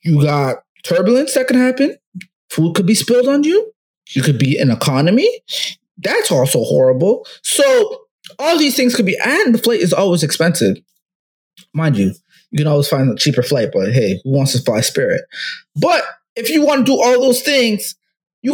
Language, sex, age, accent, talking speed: English, male, 20-39, American, 190 wpm